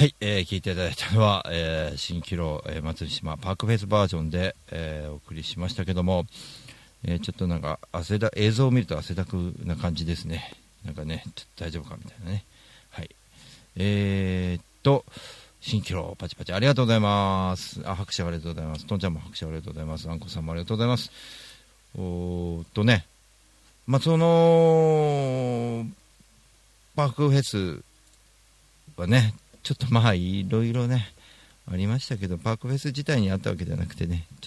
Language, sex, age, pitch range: Japanese, male, 40-59, 85-115 Hz